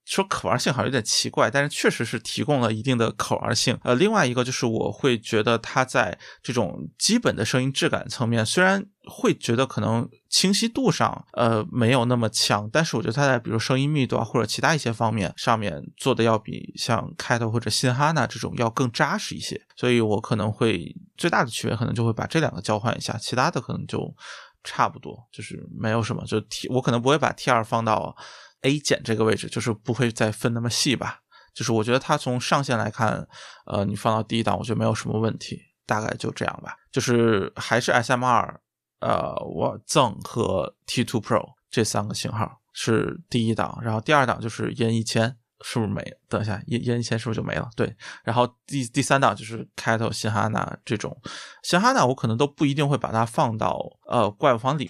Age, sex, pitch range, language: 20-39, male, 110-135 Hz, Chinese